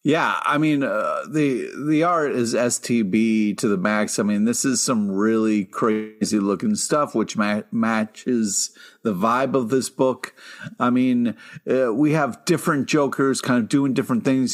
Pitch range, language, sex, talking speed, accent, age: 115-145 Hz, English, male, 165 wpm, American, 50-69